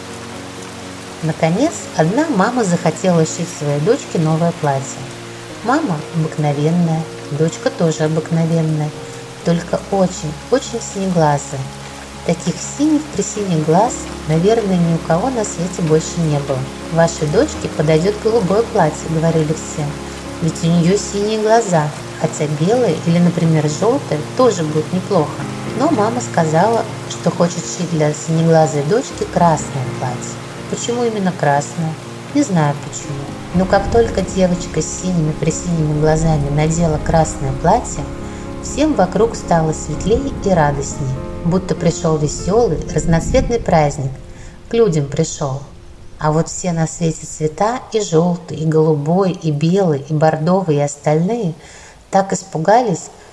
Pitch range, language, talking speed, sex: 150-180 Hz, Russian, 125 wpm, female